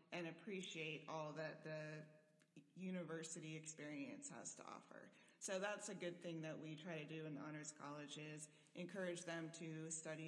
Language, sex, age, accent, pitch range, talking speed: English, female, 30-49, American, 160-190 Hz, 170 wpm